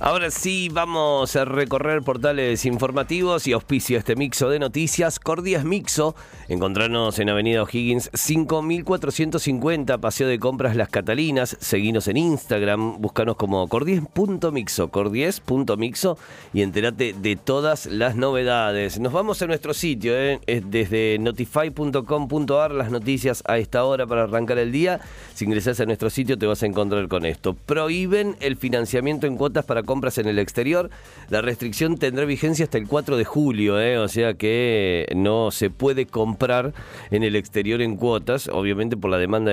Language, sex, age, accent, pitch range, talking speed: Spanish, male, 40-59, Argentinian, 105-150 Hz, 160 wpm